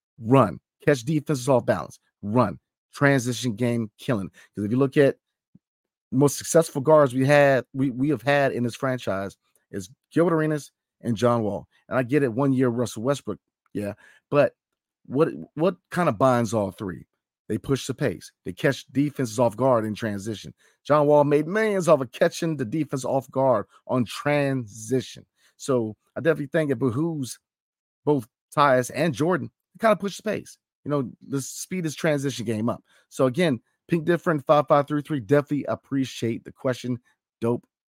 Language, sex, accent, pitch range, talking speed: English, male, American, 120-155 Hz, 175 wpm